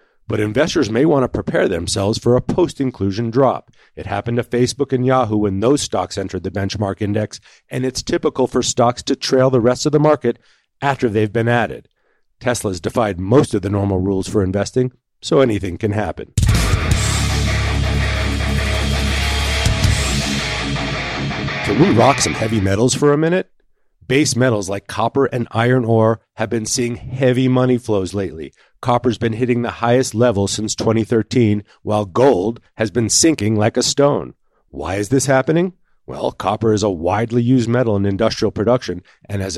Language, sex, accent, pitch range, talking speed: English, male, American, 100-125 Hz, 165 wpm